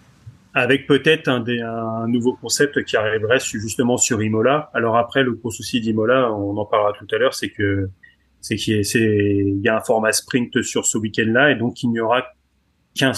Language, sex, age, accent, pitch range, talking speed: French, male, 30-49, French, 105-125 Hz, 210 wpm